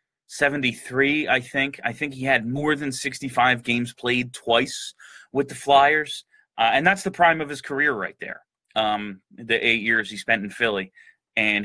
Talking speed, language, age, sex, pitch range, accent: 180 wpm, English, 30-49, male, 110-140 Hz, American